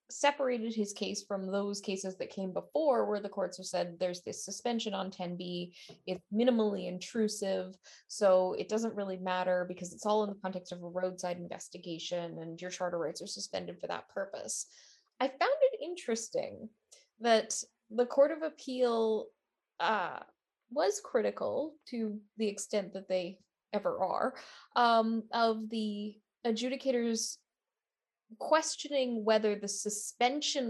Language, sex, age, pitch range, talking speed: English, female, 10-29, 190-245 Hz, 145 wpm